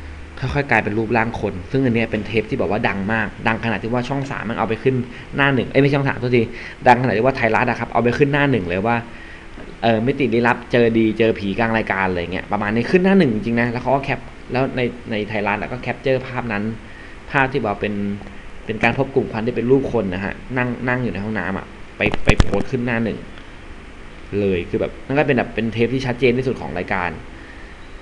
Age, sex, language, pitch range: 20-39, male, English, 100-125 Hz